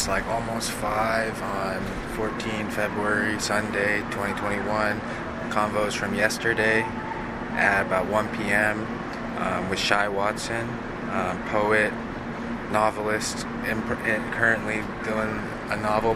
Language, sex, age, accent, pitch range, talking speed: English, male, 20-39, American, 100-115 Hz, 100 wpm